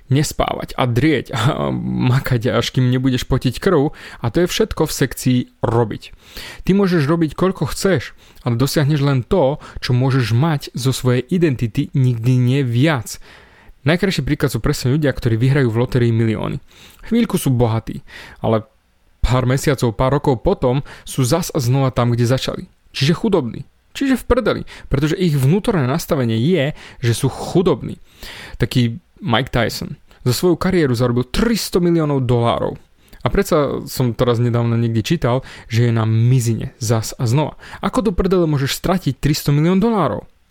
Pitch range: 120-160 Hz